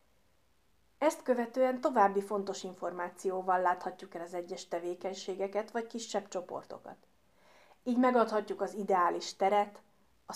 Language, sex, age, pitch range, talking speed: Hungarian, female, 30-49, 180-225 Hz, 110 wpm